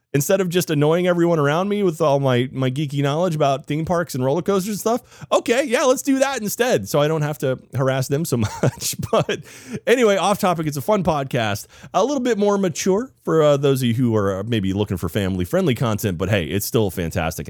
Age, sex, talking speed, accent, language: 30-49, male, 225 wpm, American, English